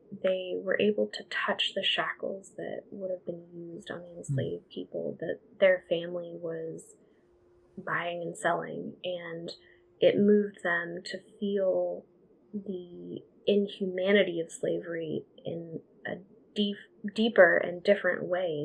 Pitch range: 170-195 Hz